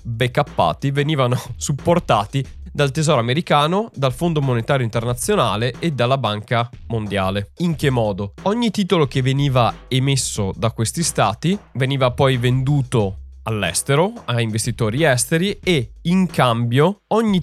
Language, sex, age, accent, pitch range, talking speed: Italian, male, 20-39, native, 120-165 Hz, 125 wpm